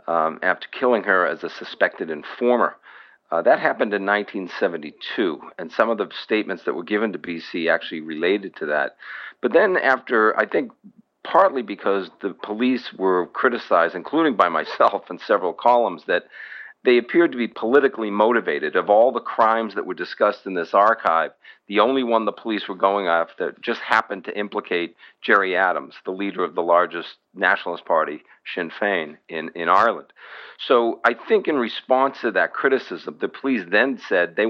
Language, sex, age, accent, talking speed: English, male, 50-69, American, 175 wpm